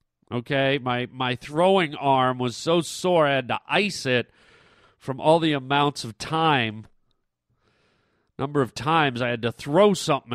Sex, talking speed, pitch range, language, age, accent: male, 155 wpm, 125-170 Hz, English, 40-59, American